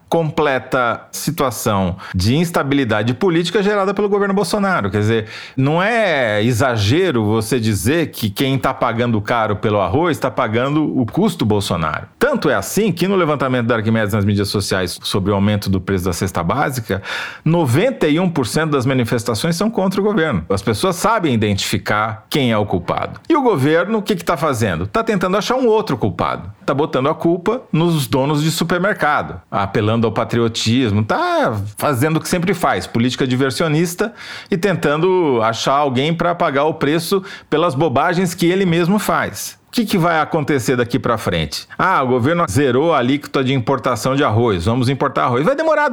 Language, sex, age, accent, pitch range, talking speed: Portuguese, male, 40-59, Brazilian, 115-175 Hz, 170 wpm